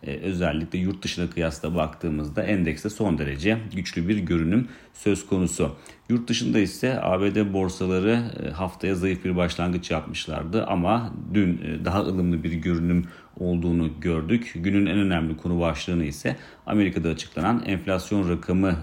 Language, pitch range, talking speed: Turkish, 80-95 Hz, 130 wpm